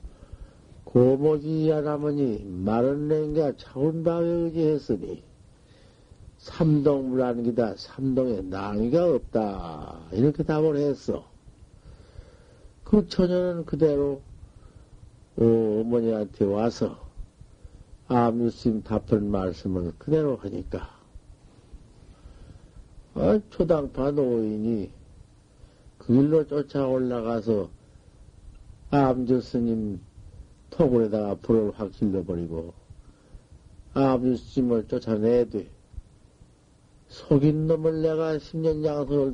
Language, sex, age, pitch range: Korean, male, 50-69, 110-155 Hz